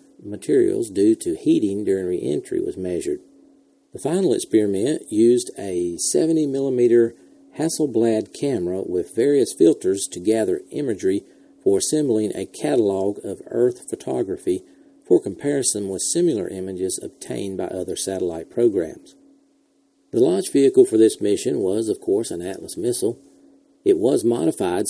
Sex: male